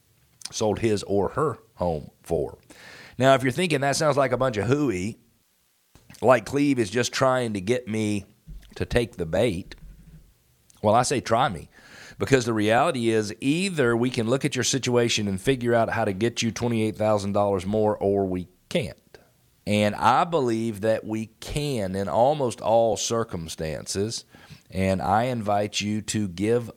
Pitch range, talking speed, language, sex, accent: 95-120 Hz, 165 wpm, English, male, American